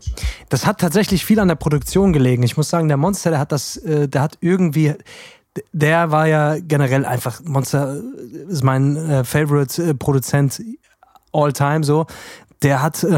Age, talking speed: 20-39, 145 wpm